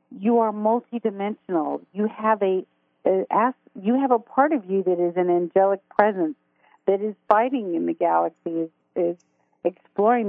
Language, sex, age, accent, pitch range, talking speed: English, female, 50-69, American, 185-230 Hz, 155 wpm